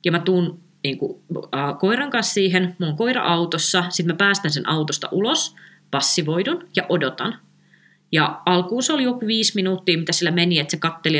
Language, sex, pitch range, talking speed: Finnish, female, 155-195 Hz, 180 wpm